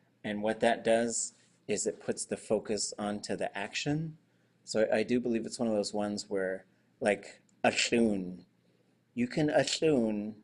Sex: male